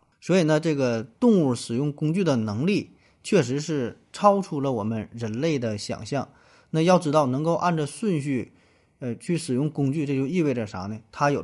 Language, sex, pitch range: Chinese, male, 115-160 Hz